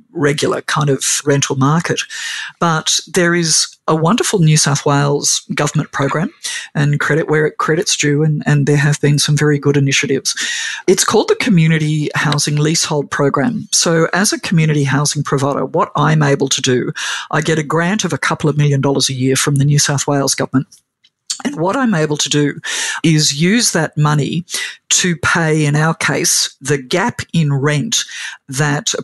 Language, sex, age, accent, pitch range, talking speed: English, female, 50-69, Australian, 140-155 Hz, 180 wpm